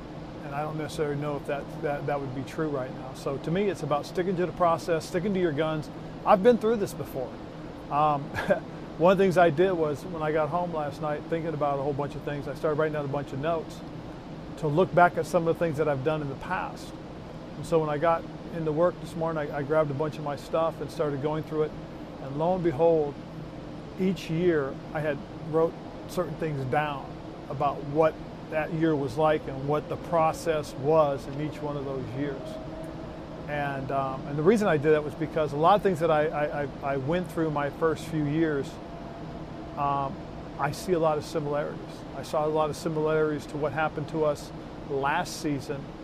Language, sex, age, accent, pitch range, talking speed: English, male, 40-59, American, 145-165 Hz, 220 wpm